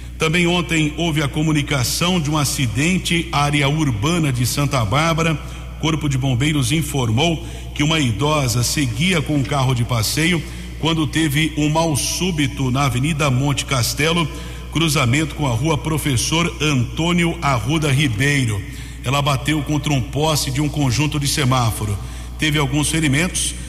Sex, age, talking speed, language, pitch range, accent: male, 60-79, 145 wpm, Portuguese, 135-155 Hz, Brazilian